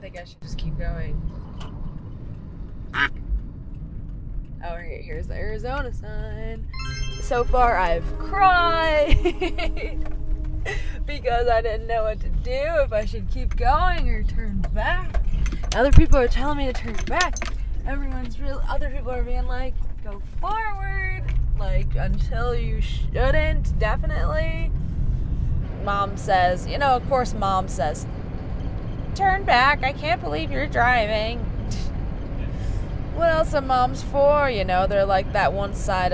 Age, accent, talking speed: 20-39, American, 135 wpm